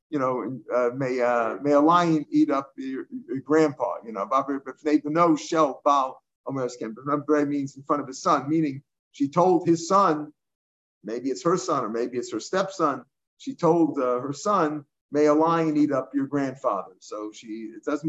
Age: 50-69